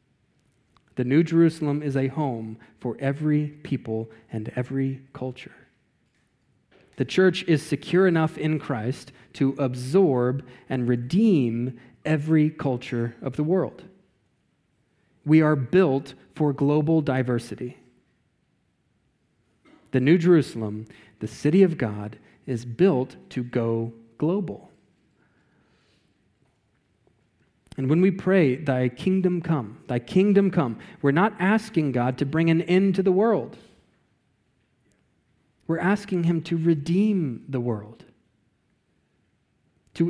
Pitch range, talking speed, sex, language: 125-160 Hz, 110 wpm, male, English